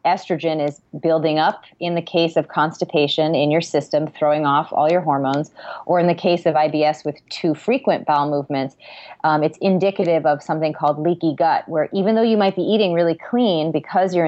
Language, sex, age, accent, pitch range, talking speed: English, female, 30-49, American, 145-165 Hz, 200 wpm